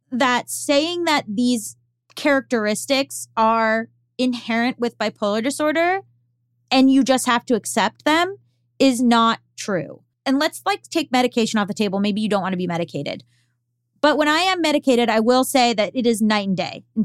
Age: 20-39